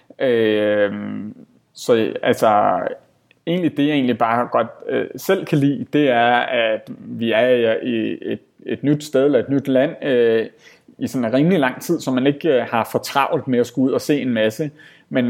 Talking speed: 180 wpm